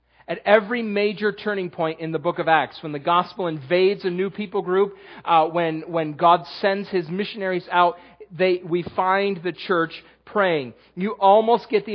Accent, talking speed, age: American, 180 wpm, 40-59